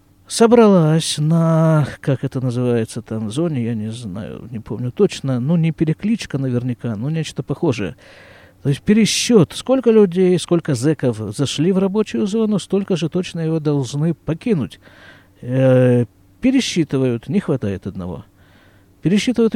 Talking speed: 135 wpm